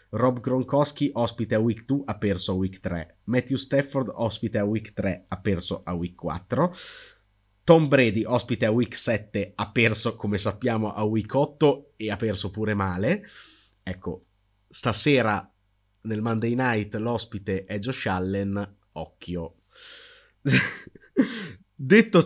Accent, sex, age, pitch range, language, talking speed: native, male, 30-49, 100-125 Hz, Italian, 135 wpm